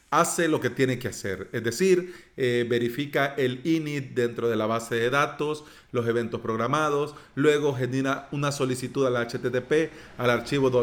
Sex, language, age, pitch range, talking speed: male, Spanish, 40-59, 125-160 Hz, 160 wpm